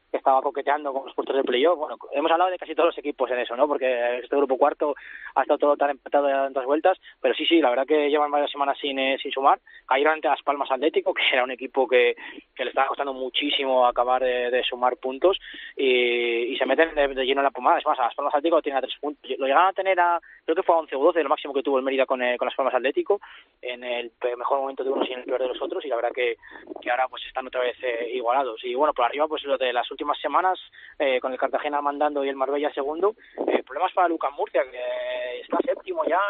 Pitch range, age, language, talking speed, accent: 135-185 Hz, 20-39, Spanish, 260 wpm, Spanish